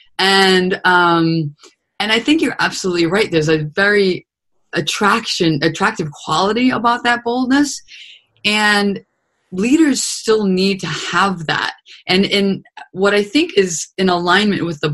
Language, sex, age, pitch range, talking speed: English, female, 20-39, 155-205 Hz, 135 wpm